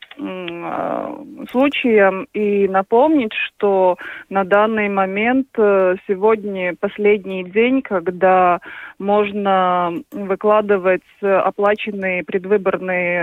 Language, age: Russian, 20-39